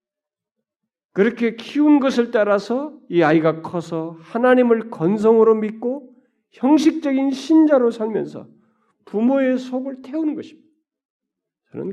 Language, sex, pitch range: Korean, male, 185-255 Hz